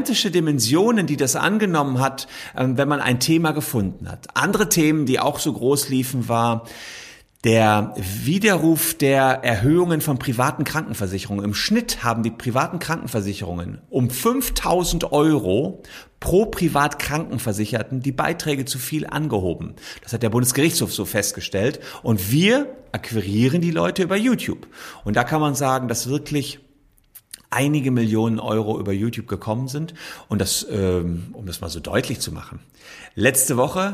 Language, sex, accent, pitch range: German, male, German, 115-155 Hz